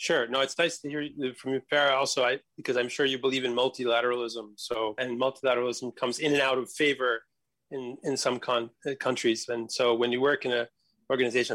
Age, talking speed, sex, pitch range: 30-49, 215 wpm, male, 115-140 Hz